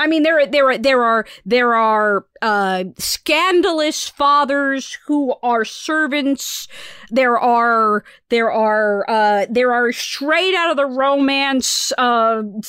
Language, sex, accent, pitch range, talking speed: English, female, American, 235-290 Hz, 130 wpm